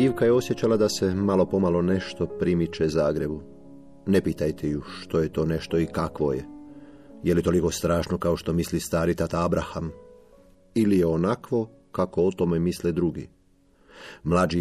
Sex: male